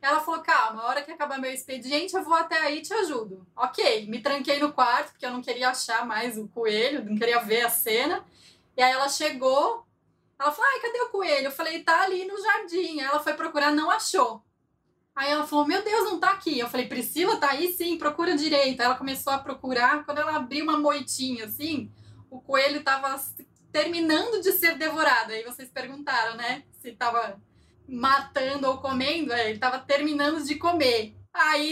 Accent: Brazilian